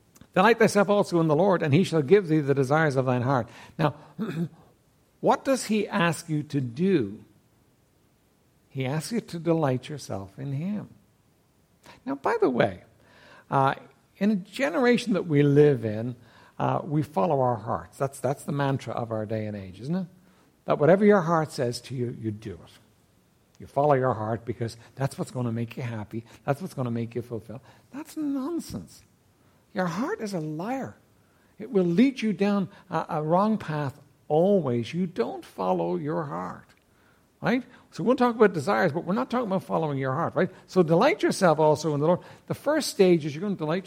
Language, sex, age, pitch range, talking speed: English, male, 60-79, 125-195 Hz, 195 wpm